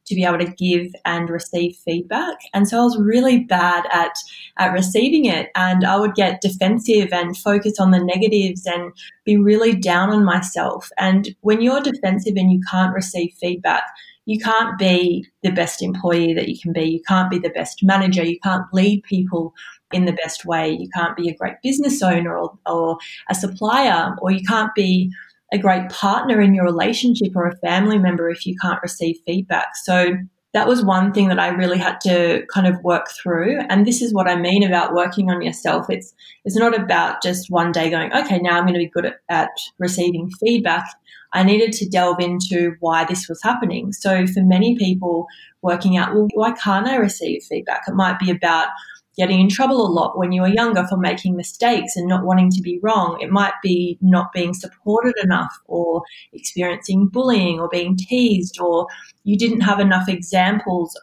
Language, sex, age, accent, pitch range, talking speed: English, female, 20-39, Australian, 175-205 Hz, 200 wpm